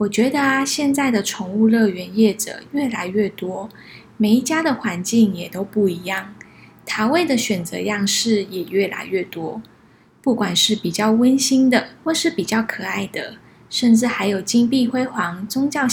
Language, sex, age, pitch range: Chinese, female, 20-39, 195-240 Hz